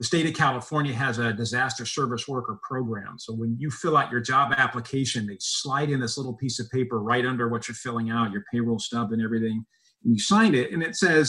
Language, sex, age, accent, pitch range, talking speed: English, male, 40-59, American, 120-140 Hz, 235 wpm